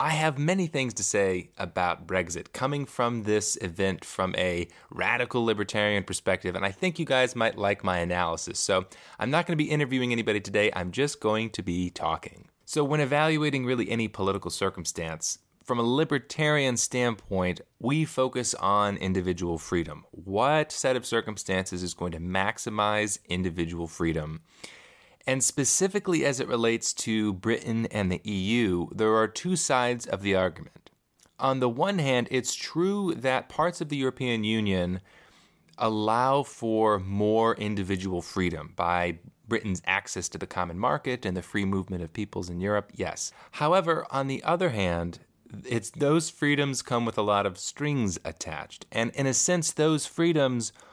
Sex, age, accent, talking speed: male, 20-39, American, 165 wpm